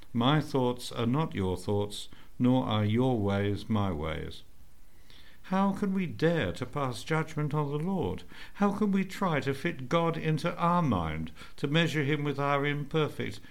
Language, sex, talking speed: English, male, 170 wpm